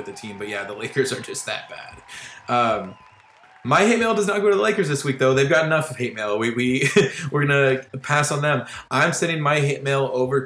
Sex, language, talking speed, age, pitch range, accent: male, English, 240 wpm, 20-39, 115-145 Hz, American